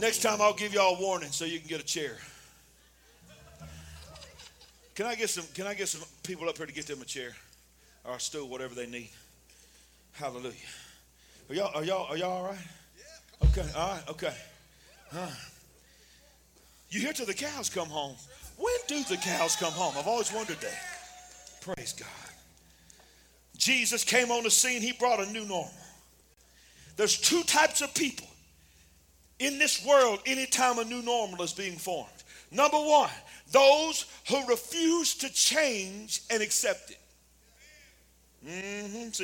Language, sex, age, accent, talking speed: English, male, 40-59, American, 150 wpm